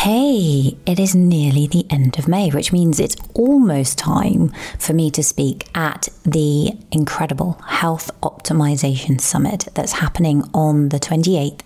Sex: female